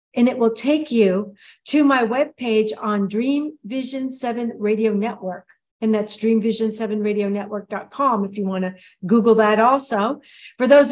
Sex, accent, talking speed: female, American, 145 wpm